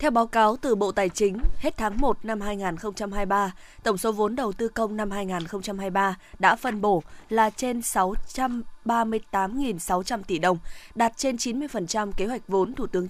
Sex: female